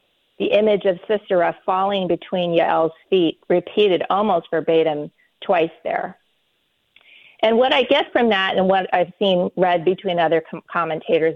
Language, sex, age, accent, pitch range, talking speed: English, female, 40-59, American, 165-205 Hz, 145 wpm